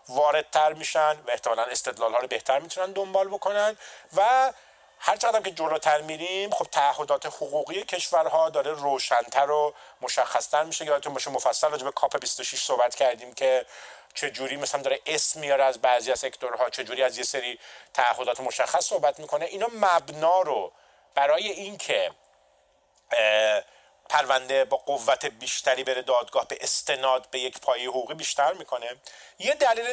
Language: Persian